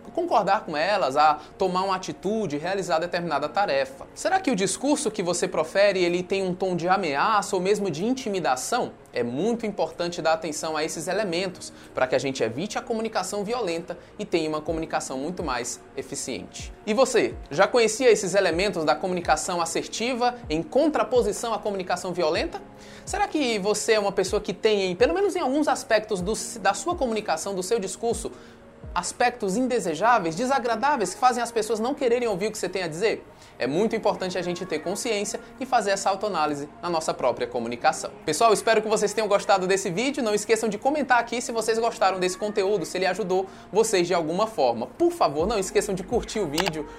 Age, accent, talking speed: 20-39, Brazilian, 185 wpm